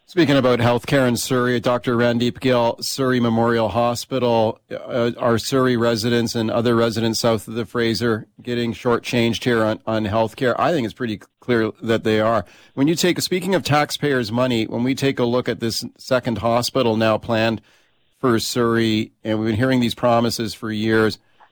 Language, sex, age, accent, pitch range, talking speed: English, male, 40-59, American, 115-130 Hz, 180 wpm